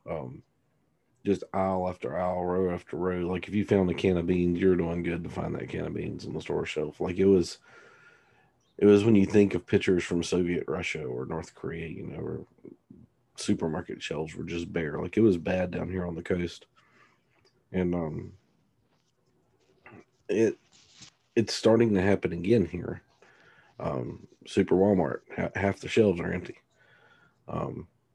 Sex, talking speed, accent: male, 170 wpm, American